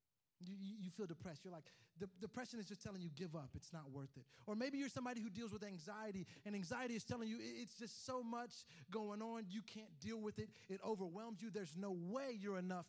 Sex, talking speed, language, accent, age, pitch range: male, 235 wpm, English, American, 30-49, 165-225 Hz